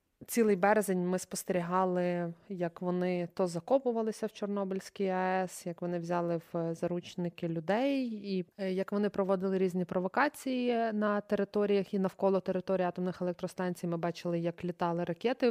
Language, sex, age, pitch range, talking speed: Ukrainian, female, 20-39, 175-195 Hz, 135 wpm